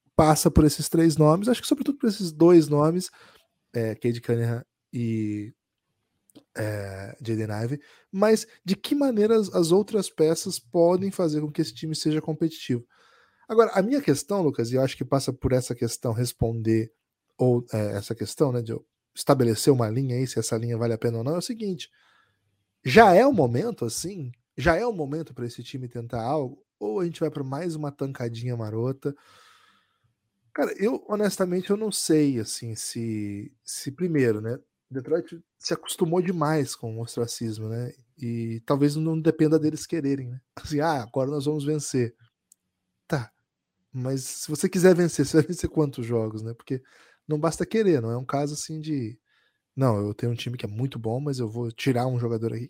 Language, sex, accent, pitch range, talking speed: Portuguese, male, Brazilian, 115-165 Hz, 185 wpm